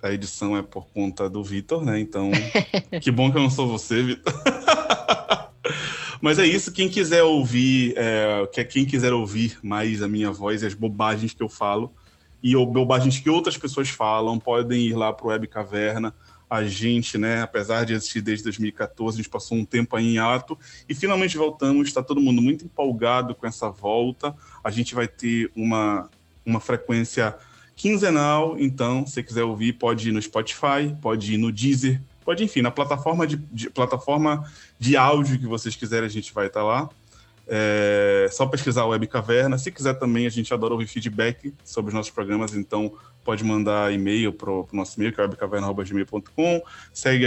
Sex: male